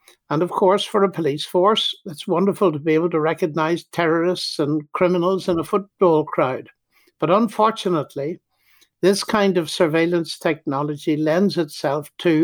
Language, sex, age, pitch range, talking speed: English, male, 60-79, 160-200 Hz, 150 wpm